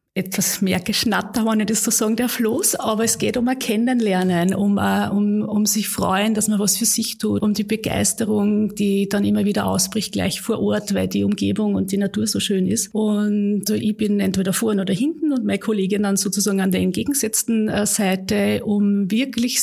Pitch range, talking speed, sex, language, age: 190-220 Hz, 195 wpm, female, German, 50-69